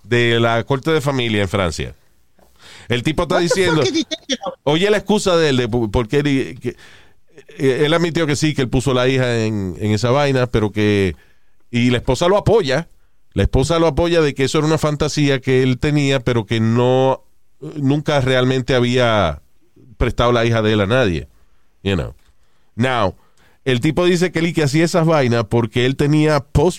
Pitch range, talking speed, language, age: 115-155 Hz, 180 wpm, Spanish, 40-59